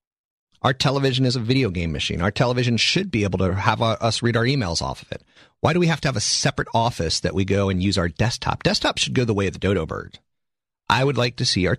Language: English